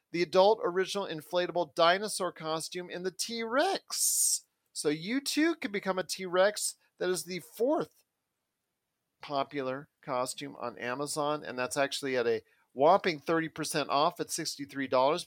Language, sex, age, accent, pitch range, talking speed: English, male, 40-59, American, 150-190 Hz, 135 wpm